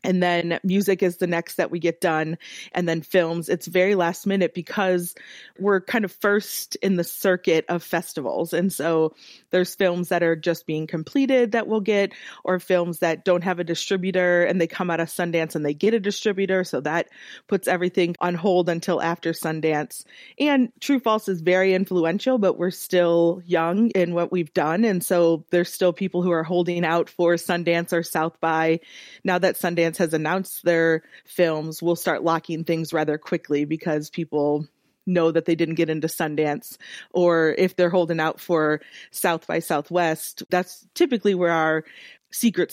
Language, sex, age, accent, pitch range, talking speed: English, female, 30-49, American, 165-185 Hz, 185 wpm